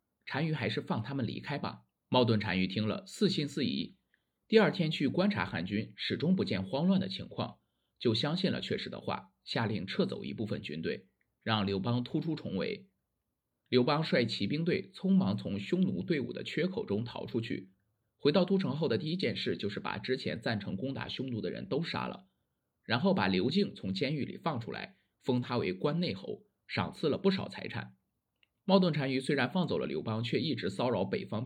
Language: Chinese